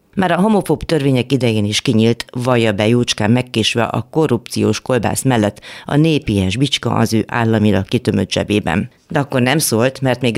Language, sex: Hungarian, female